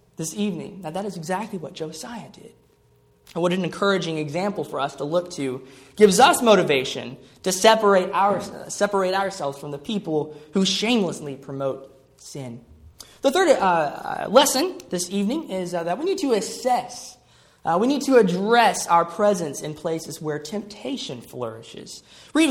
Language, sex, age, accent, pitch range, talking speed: English, male, 20-39, American, 170-240 Hz, 160 wpm